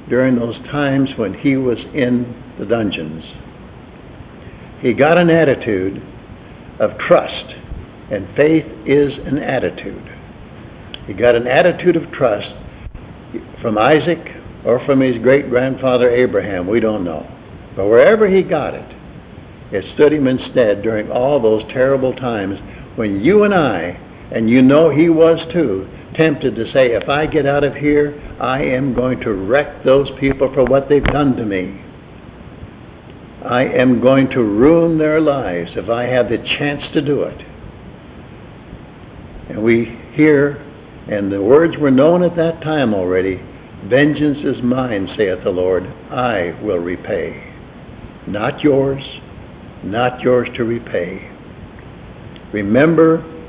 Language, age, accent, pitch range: English, 60-79, American, 115-145 Hz